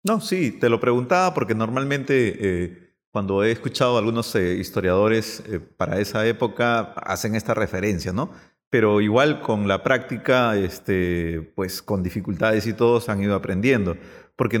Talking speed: 155 wpm